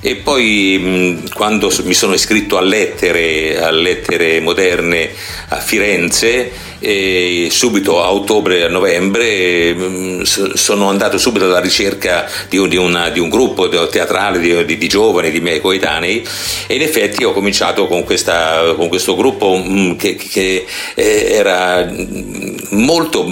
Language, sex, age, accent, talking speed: Italian, male, 50-69, native, 135 wpm